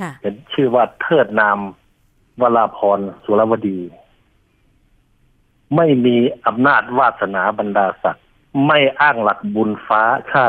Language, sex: Thai, male